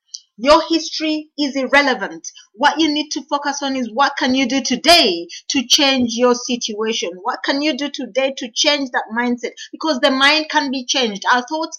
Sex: female